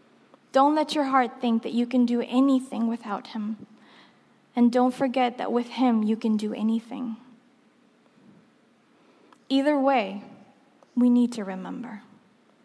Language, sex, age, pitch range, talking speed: English, female, 10-29, 235-300 Hz, 135 wpm